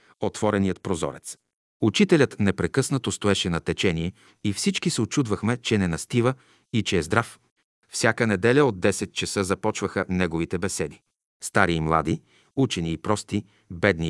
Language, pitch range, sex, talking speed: Bulgarian, 90-115 Hz, male, 140 wpm